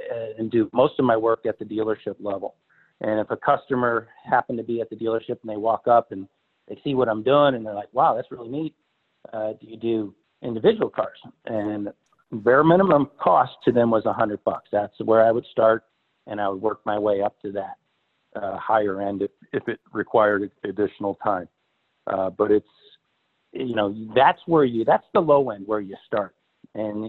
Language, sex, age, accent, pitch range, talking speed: English, male, 50-69, American, 100-120 Hz, 200 wpm